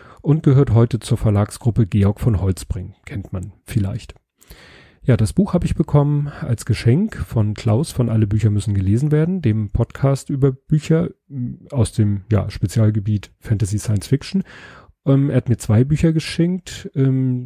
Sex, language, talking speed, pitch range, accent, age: male, German, 160 wpm, 110-135 Hz, German, 30-49